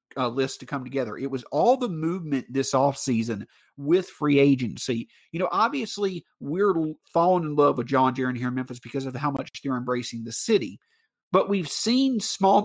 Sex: male